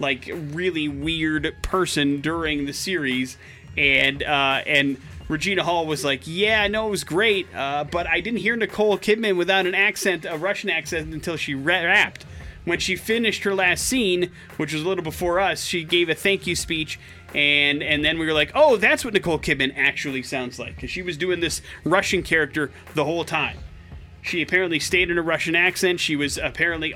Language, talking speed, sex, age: English, 195 wpm, male, 30-49